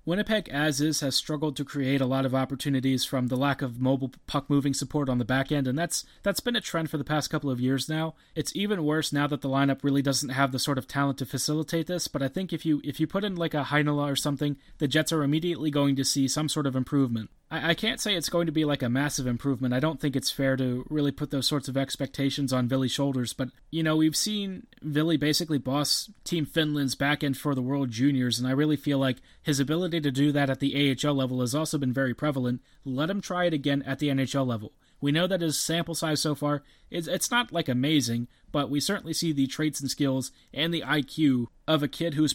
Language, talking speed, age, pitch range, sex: English, 250 wpm, 30-49, 135-155 Hz, male